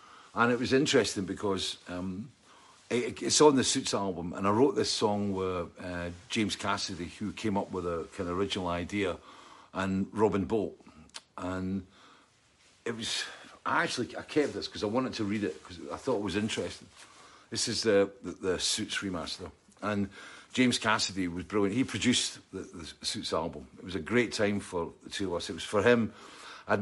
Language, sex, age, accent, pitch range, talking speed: English, male, 50-69, British, 90-105 Hz, 190 wpm